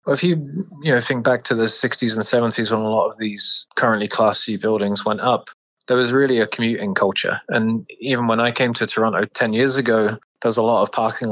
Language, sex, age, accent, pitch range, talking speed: English, male, 20-39, British, 105-120 Hz, 235 wpm